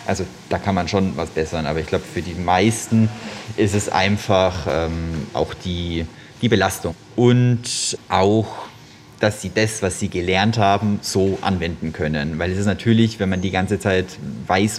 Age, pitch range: 30-49, 95-120 Hz